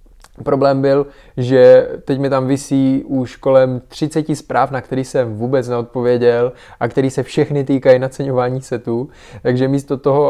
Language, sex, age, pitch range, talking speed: Czech, male, 20-39, 120-145 Hz, 150 wpm